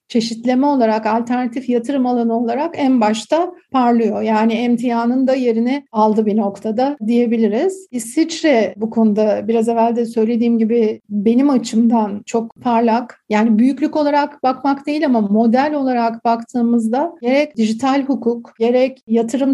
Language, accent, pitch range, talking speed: Turkish, native, 225-265 Hz, 130 wpm